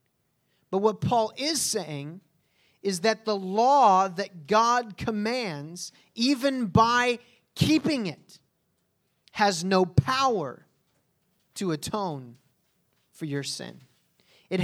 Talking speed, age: 105 wpm, 30-49